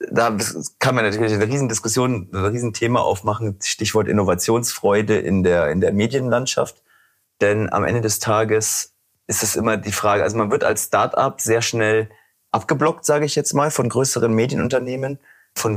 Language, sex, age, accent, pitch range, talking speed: German, male, 30-49, German, 100-130 Hz, 165 wpm